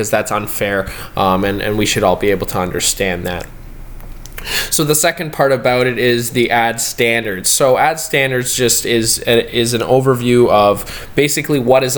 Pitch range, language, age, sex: 110-130 Hz, English, 20-39, male